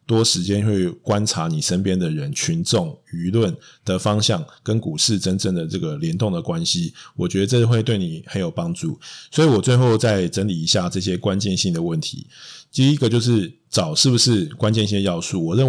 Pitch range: 100-150 Hz